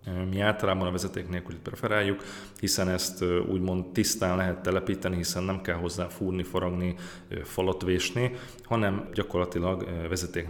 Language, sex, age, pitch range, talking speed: Hungarian, male, 30-49, 85-100 Hz, 130 wpm